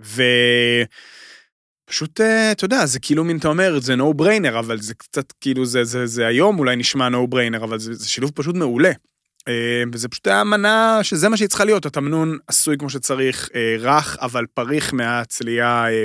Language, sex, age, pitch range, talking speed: Hebrew, male, 30-49, 120-165 Hz, 165 wpm